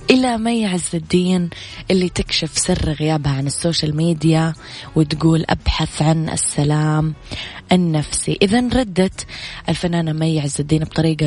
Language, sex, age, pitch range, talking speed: Arabic, female, 20-39, 145-165 Hz, 120 wpm